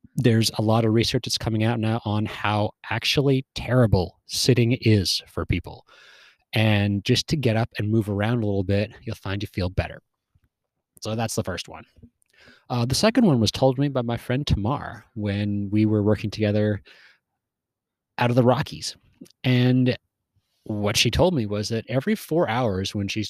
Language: English